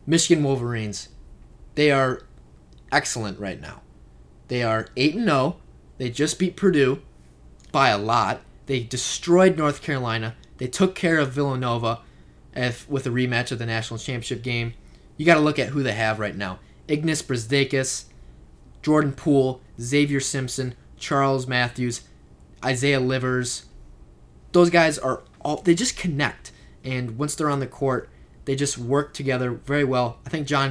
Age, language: 20-39, English